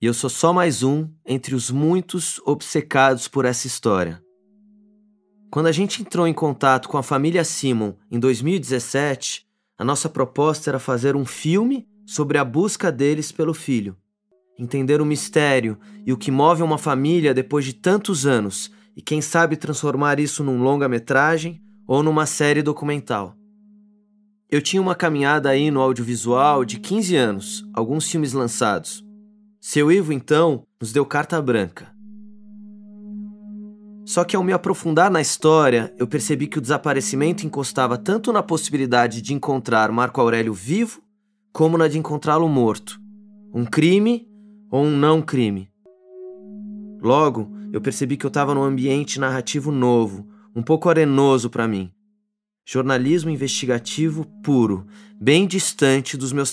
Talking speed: 145 wpm